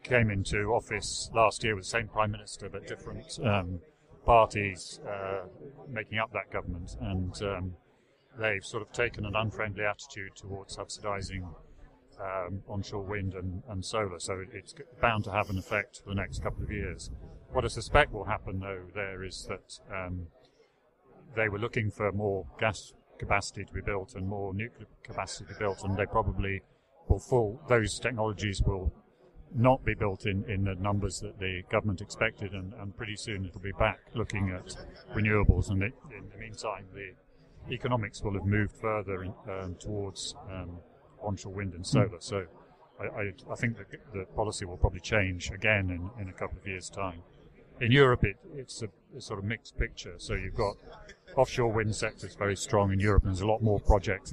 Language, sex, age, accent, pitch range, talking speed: English, male, 40-59, British, 95-110 Hz, 185 wpm